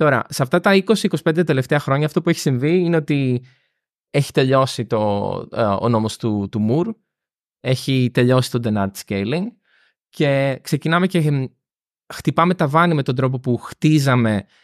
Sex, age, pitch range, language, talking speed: male, 20-39, 110-145 Hz, Greek, 150 wpm